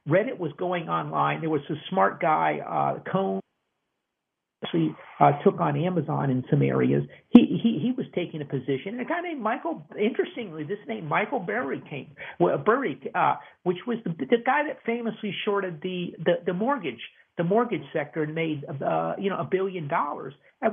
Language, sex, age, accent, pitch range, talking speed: English, male, 50-69, American, 160-225 Hz, 175 wpm